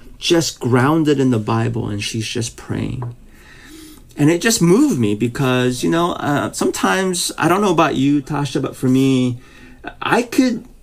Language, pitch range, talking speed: English, 120-165 Hz, 165 wpm